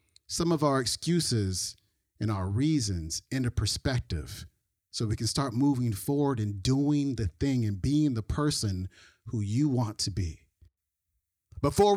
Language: English